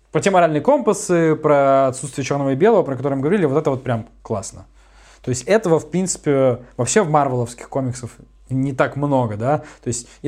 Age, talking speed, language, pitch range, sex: 20-39, 195 wpm, Russian, 125-165 Hz, male